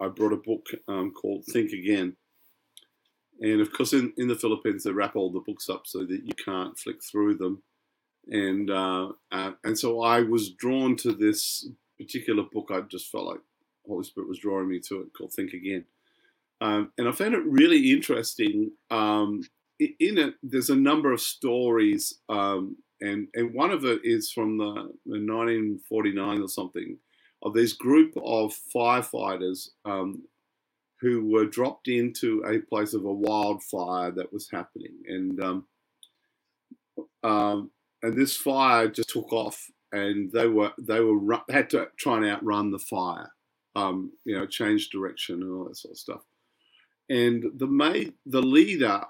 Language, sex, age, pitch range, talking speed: English, male, 50-69, 105-145 Hz, 170 wpm